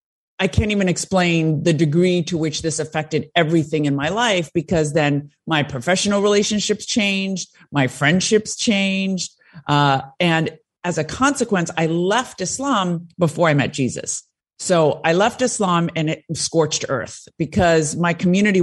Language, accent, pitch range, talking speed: English, American, 150-180 Hz, 150 wpm